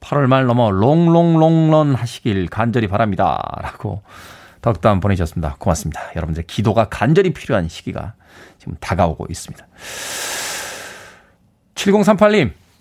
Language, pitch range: Korean, 115-175 Hz